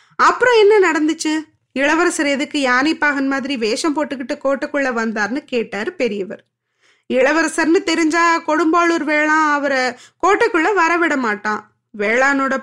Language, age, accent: Tamil, 20-39, native